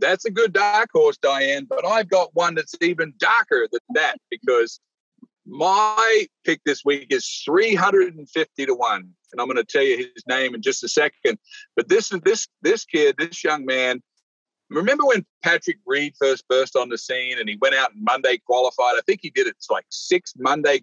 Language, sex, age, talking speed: English, male, 50-69, 200 wpm